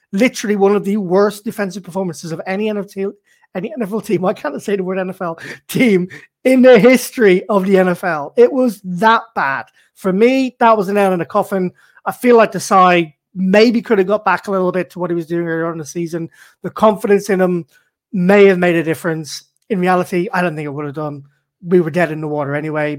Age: 30-49